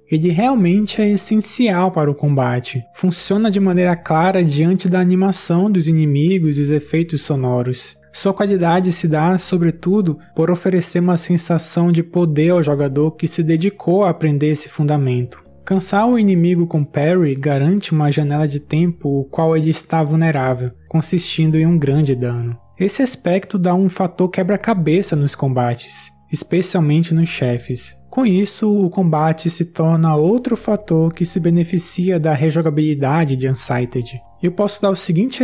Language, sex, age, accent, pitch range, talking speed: Portuguese, male, 20-39, Brazilian, 145-185 Hz, 155 wpm